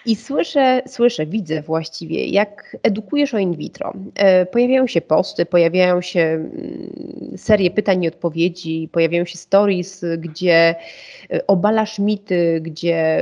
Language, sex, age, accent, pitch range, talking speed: Polish, female, 30-49, native, 165-210 Hz, 120 wpm